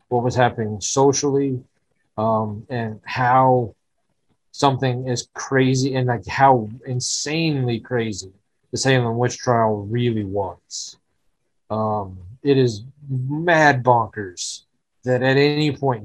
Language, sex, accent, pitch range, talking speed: English, male, American, 110-135 Hz, 110 wpm